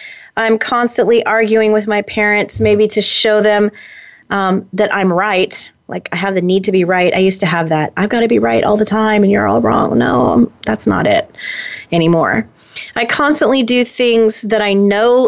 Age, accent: 30-49, American